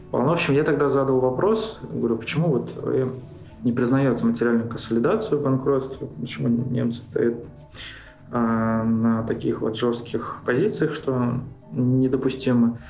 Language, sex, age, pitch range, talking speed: Russian, male, 20-39, 110-130 Hz, 115 wpm